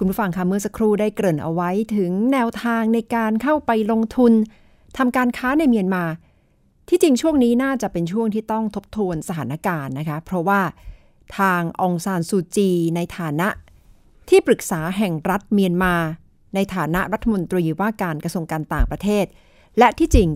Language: Thai